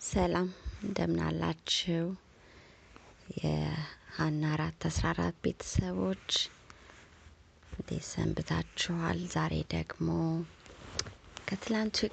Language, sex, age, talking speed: Amharic, female, 30-49, 55 wpm